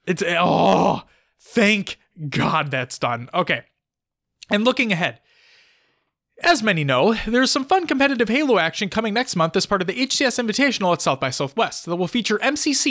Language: English